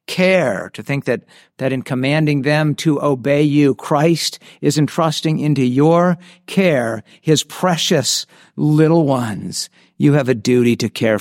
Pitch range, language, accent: 120-150 Hz, English, American